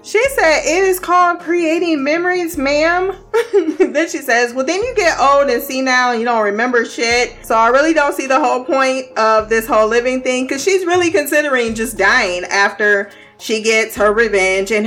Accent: American